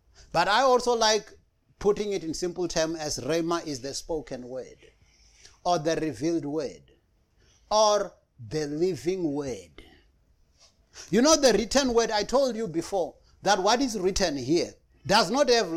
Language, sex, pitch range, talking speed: English, male, 145-230 Hz, 150 wpm